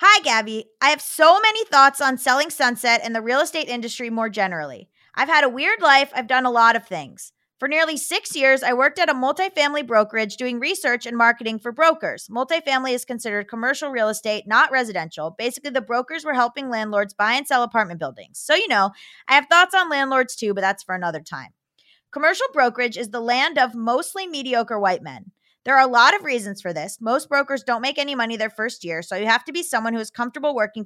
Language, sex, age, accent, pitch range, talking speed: English, female, 20-39, American, 225-290 Hz, 220 wpm